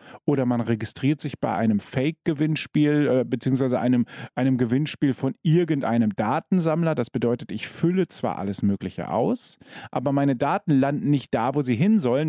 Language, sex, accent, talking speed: German, male, German, 160 wpm